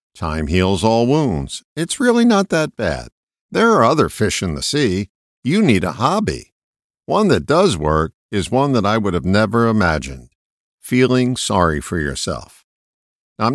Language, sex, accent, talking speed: English, male, American, 165 wpm